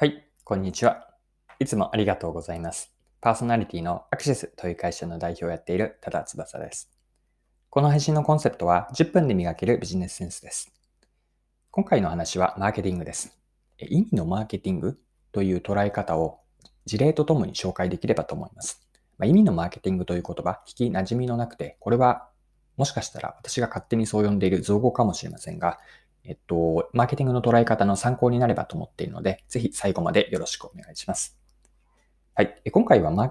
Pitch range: 90-125 Hz